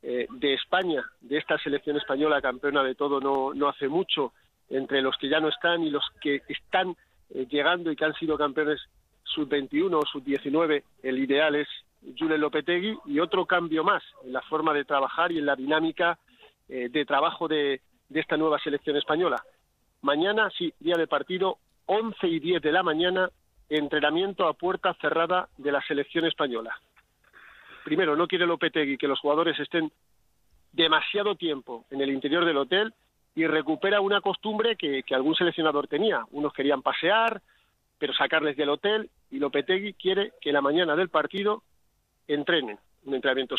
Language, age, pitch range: Spanish, 50-69, 145-180 Hz